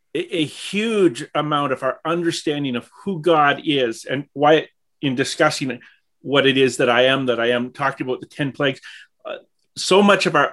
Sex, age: male, 40-59